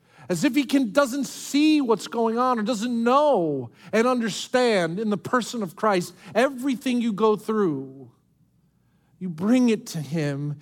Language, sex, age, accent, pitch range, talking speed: English, male, 40-59, American, 165-225 Hz, 160 wpm